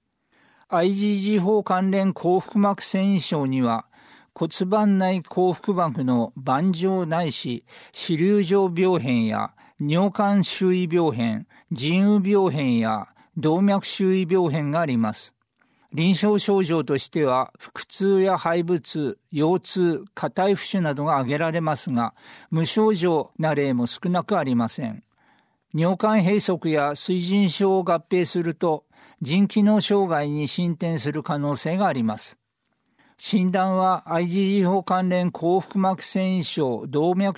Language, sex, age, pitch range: Japanese, male, 50-69, 155-195 Hz